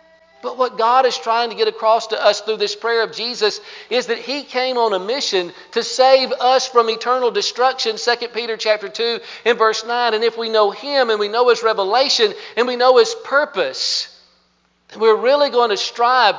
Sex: male